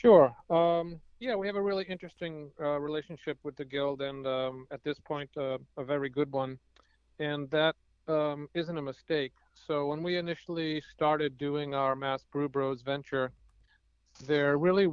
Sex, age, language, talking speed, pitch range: male, 40-59, English, 170 wpm, 130-150 Hz